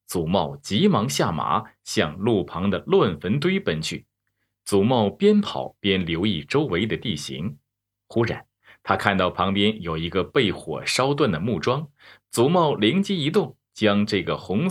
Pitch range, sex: 95-140 Hz, male